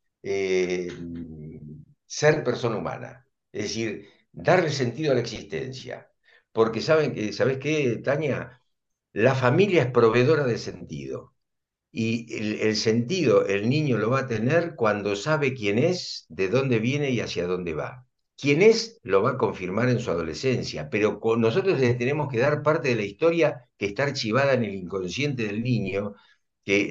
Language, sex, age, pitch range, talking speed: Spanish, male, 60-79, 105-140 Hz, 155 wpm